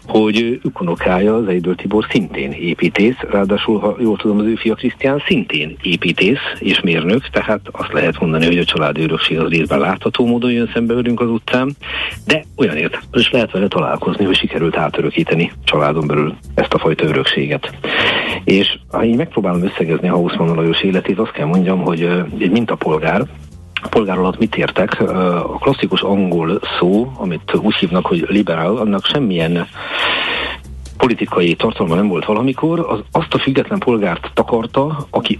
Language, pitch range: Hungarian, 85-115 Hz